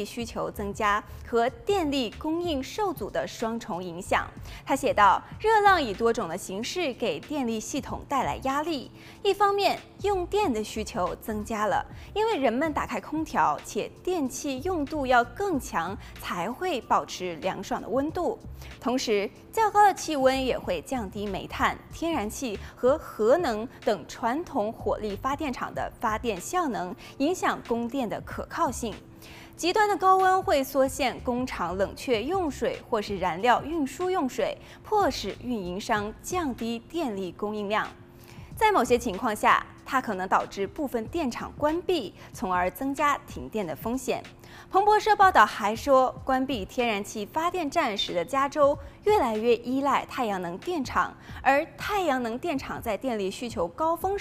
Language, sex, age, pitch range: Chinese, female, 20-39, 220-340 Hz